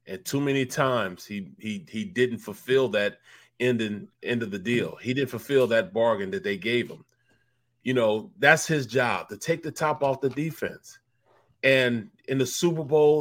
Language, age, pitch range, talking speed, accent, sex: English, 30-49, 125-155 Hz, 190 wpm, American, male